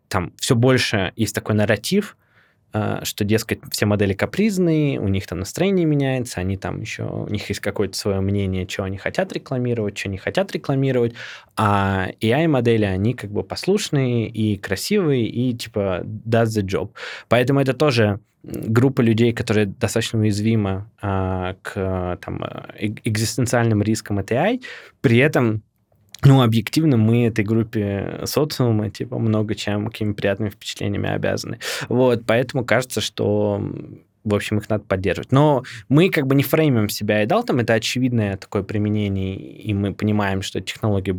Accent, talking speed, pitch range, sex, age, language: native, 150 wpm, 105-125 Hz, male, 20-39, Russian